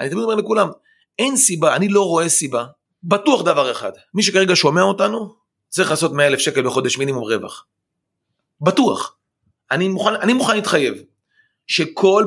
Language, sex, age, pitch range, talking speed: Hebrew, male, 30-49, 135-190 Hz, 155 wpm